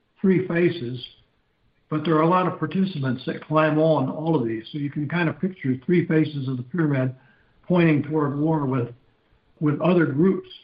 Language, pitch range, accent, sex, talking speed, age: English, 135-160 Hz, American, male, 185 wpm, 60-79